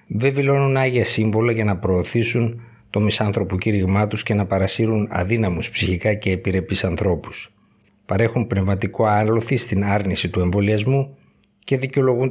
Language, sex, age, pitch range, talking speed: Greek, male, 50-69, 95-115 Hz, 130 wpm